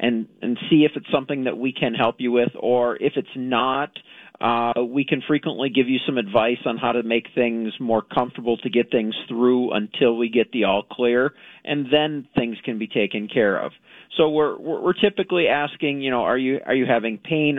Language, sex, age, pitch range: English, male, 40-59, 120-150 Hz